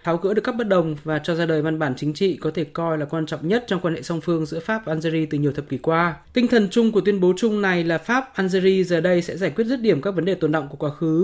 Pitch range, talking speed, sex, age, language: 160-200 Hz, 320 wpm, male, 20-39, Vietnamese